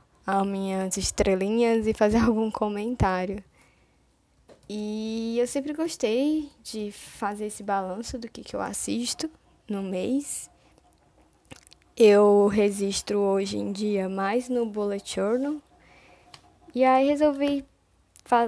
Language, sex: Portuguese, female